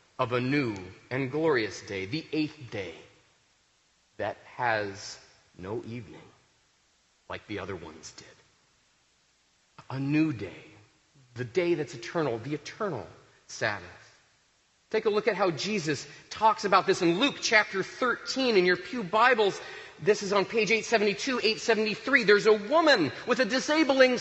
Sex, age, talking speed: male, 40-59, 140 wpm